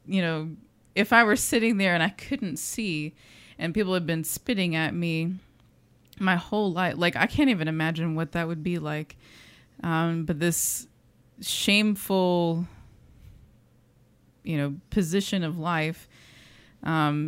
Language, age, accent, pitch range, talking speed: English, 20-39, American, 155-195 Hz, 140 wpm